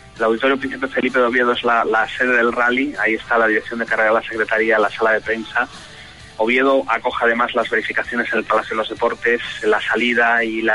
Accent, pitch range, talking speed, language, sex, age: Spanish, 110-130 Hz, 220 wpm, Spanish, male, 30-49